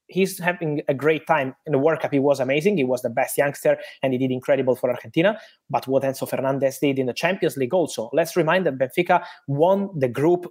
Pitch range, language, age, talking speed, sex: 135-175 Hz, English, 20-39, 230 wpm, male